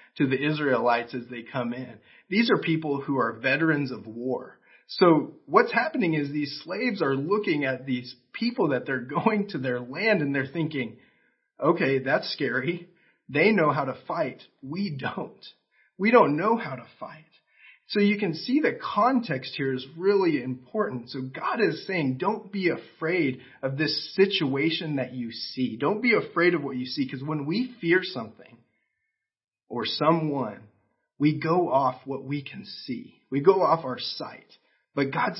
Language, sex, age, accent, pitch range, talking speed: English, male, 40-59, American, 125-175 Hz, 175 wpm